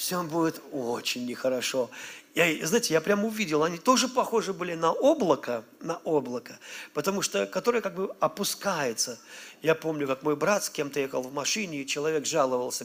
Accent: native